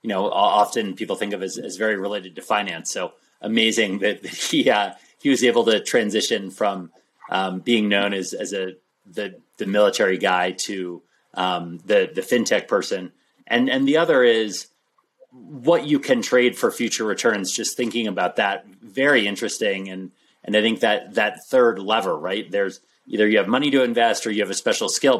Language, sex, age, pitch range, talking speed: English, male, 30-49, 95-125 Hz, 190 wpm